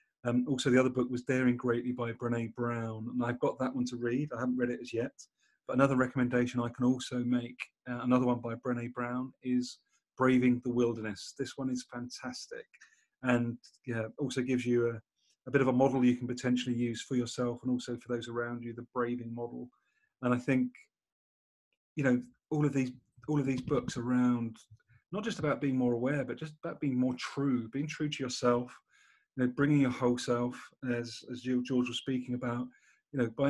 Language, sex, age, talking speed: English, male, 30-49, 205 wpm